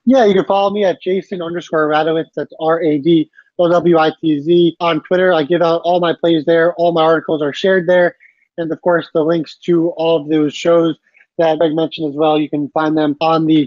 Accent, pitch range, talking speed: American, 165-195 Hz, 205 wpm